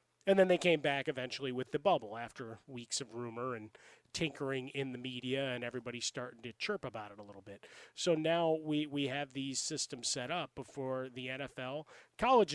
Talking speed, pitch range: 195 wpm, 130-155 Hz